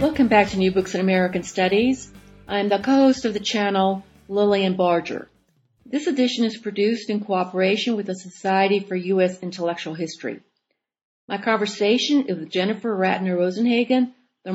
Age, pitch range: 40-59, 180-220 Hz